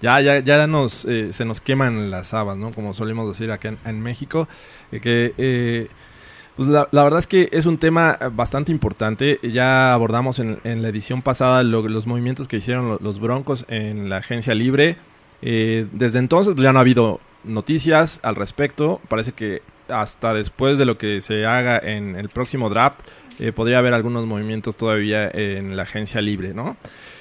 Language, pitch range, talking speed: Spanish, 110-140 Hz, 190 wpm